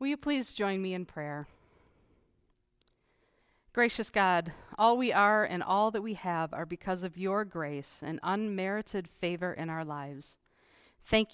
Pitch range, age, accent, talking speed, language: 160-200 Hz, 40-59, American, 155 wpm, English